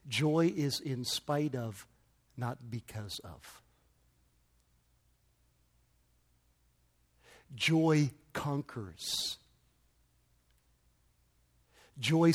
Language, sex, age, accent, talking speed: English, male, 50-69, American, 55 wpm